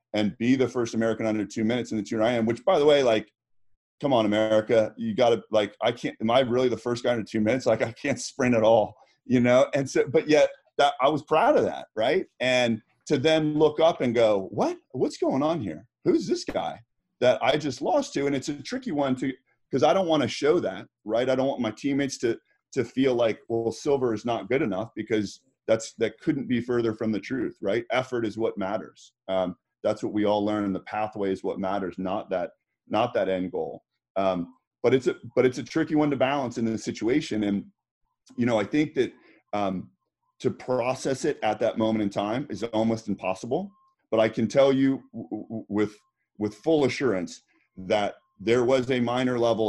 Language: English